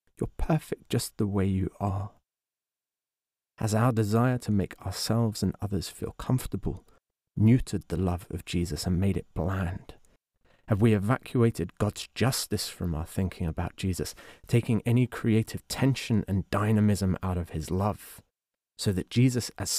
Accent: British